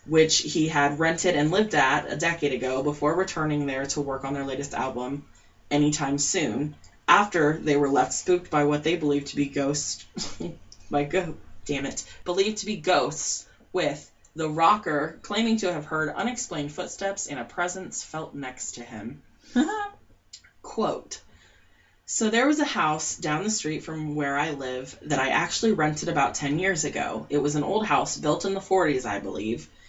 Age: 20-39